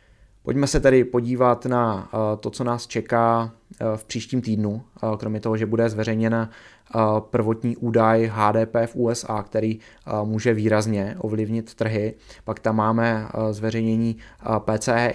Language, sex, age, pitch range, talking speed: Czech, male, 20-39, 105-115 Hz, 125 wpm